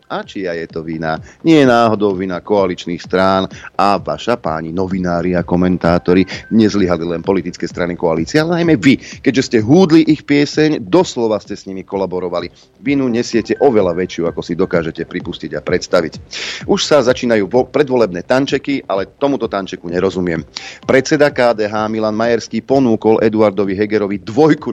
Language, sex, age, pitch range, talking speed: Slovak, male, 40-59, 95-125 Hz, 150 wpm